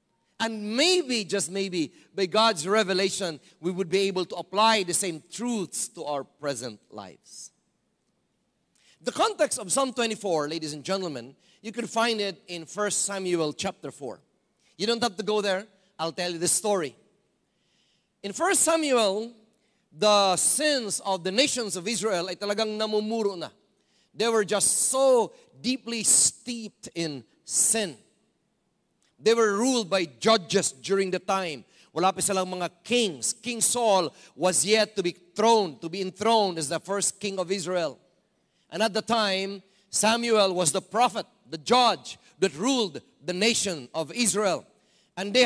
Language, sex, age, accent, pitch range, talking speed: English, male, 40-59, Filipino, 185-225 Hz, 150 wpm